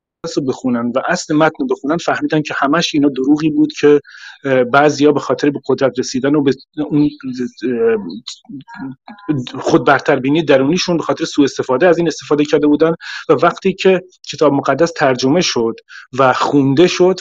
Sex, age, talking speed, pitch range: male, 30-49, 150 wpm, 130-165 Hz